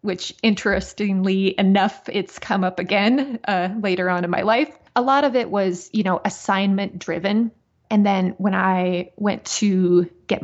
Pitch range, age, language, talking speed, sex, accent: 175-205 Hz, 20-39, English, 165 wpm, female, American